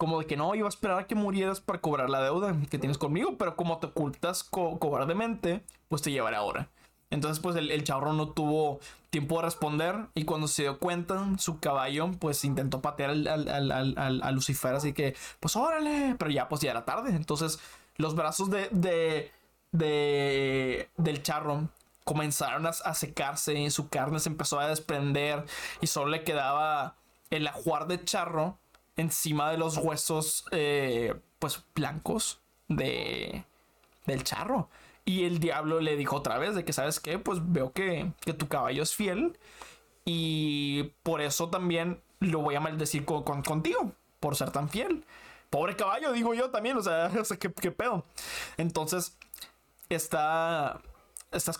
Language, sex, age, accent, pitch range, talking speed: Spanish, male, 20-39, Mexican, 145-180 Hz, 170 wpm